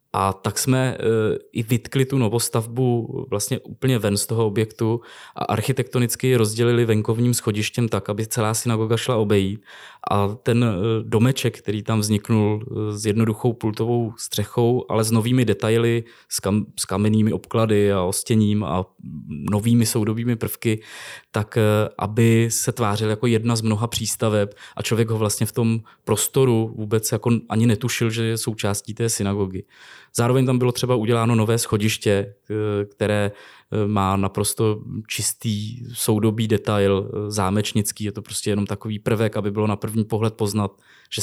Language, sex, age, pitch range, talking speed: Czech, male, 20-39, 105-120 Hz, 150 wpm